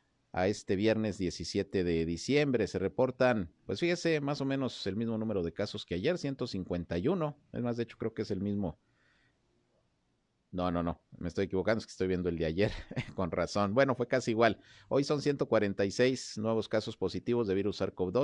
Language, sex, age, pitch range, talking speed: Spanish, male, 50-69, 90-115 Hz, 190 wpm